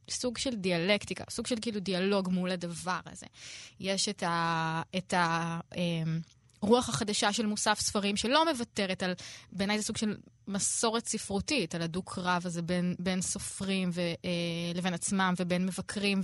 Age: 20-39